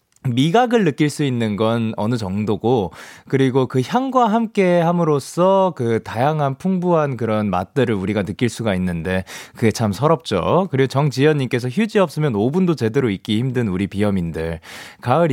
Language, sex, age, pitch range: Korean, male, 20-39, 110-175 Hz